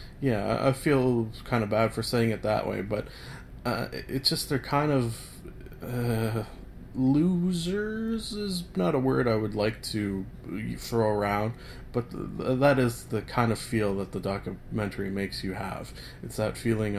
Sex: male